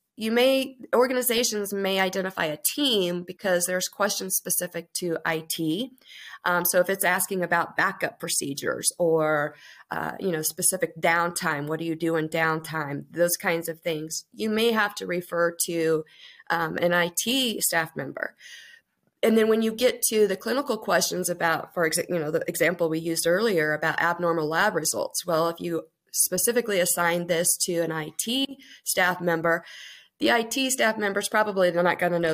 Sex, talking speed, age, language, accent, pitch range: female, 170 wpm, 30-49, English, American, 165-215 Hz